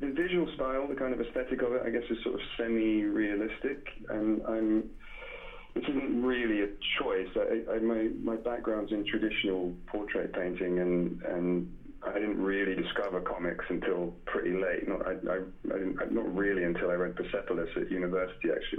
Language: English